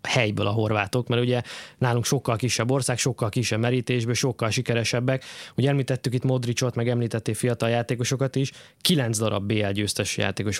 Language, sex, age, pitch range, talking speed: Hungarian, male, 20-39, 105-130 Hz, 160 wpm